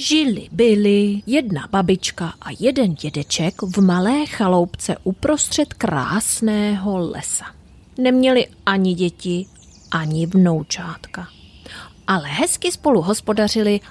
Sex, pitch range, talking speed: female, 180-250 Hz, 95 wpm